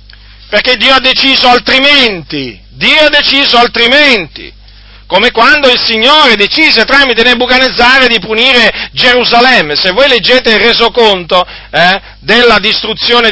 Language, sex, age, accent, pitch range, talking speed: Italian, male, 40-59, native, 180-245 Hz, 120 wpm